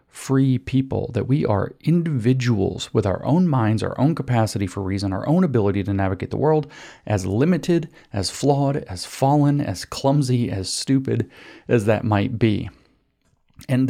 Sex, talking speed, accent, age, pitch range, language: male, 160 wpm, American, 40-59, 100-140 Hz, English